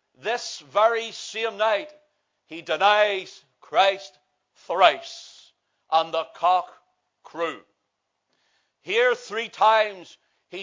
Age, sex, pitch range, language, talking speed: 60-79, male, 200-240 Hz, English, 90 wpm